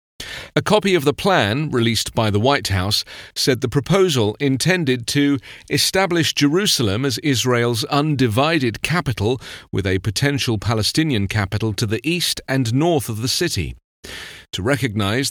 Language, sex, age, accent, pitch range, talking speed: English, male, 40-59, British, 105-150 Hz, 140 wpm